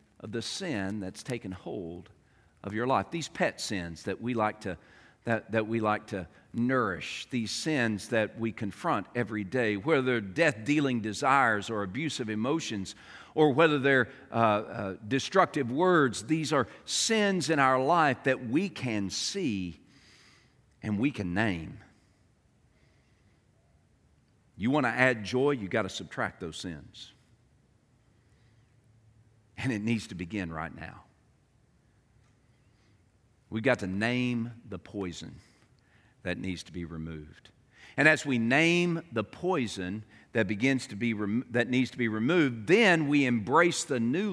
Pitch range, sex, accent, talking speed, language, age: 105-145 Hz, male, American, 145 wpm, English, 50-69